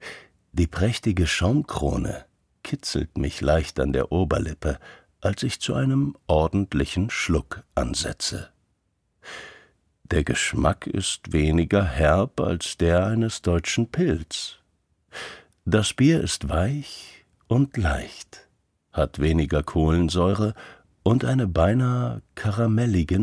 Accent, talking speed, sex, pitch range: German, 100 wpm, male, 75-105 Hz